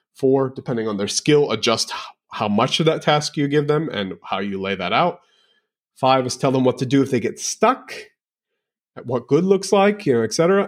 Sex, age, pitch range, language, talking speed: male, 30-49, 110-145 Hz, English, 210 wpm